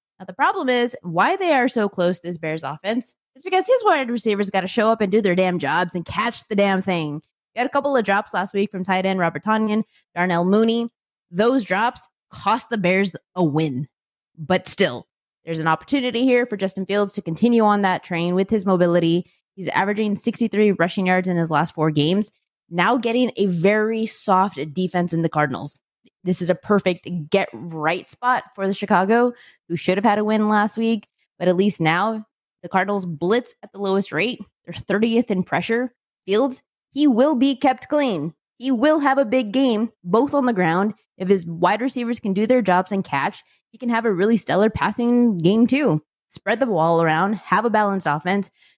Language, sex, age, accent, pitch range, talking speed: English, female, 20-39, American, 180-235 Hz, 205 wpm